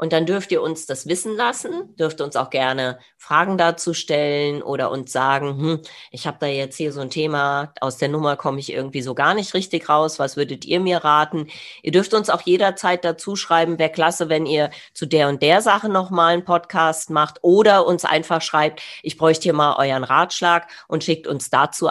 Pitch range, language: 145-185 Hz, German